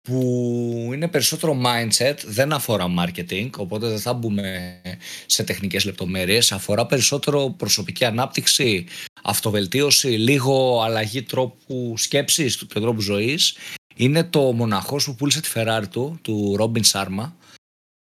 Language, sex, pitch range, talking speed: Greek, male, 105-135 Hz, 125 wpm